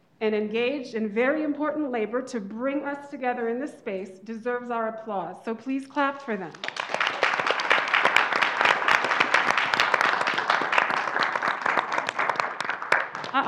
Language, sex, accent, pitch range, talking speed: English, female, American, 230-290 Hz, 100 wpm